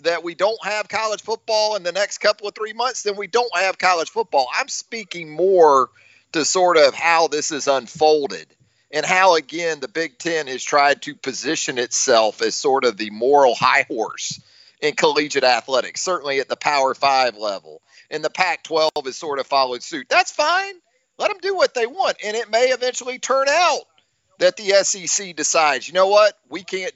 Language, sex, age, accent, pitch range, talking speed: English, male, 40-59, American, 160-250 Hz, 195 wpm